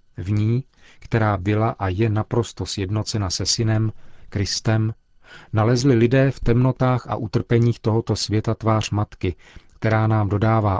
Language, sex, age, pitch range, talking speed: Czech, male, 40-59, 100-115 Hz, 135 wpm